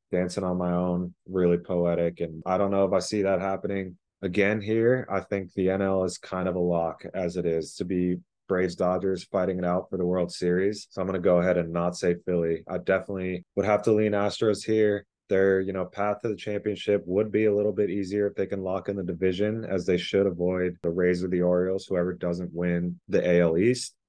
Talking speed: 230 wpm